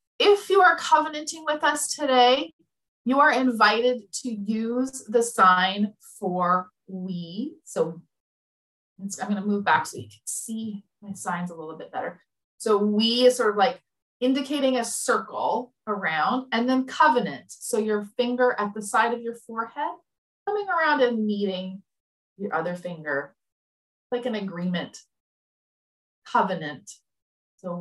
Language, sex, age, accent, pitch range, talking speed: English, female, 30-49, American, 195-265 Hz, 145 wpm